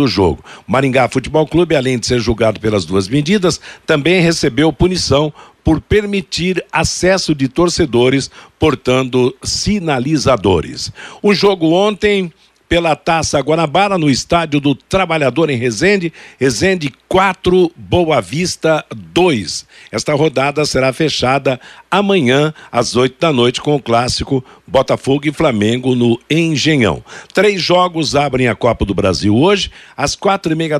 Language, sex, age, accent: Portuguese, male, 60-79, Brazilian